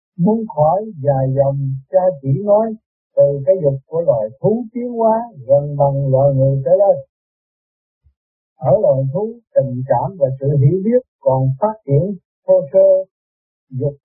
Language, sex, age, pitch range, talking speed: Vietnamese, male, 60-79, 135-200 Hz, 155 wpm